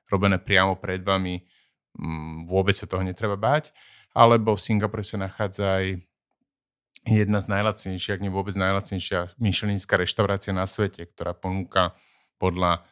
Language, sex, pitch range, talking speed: Slovak, male, 90-100 Hz, 135 wpm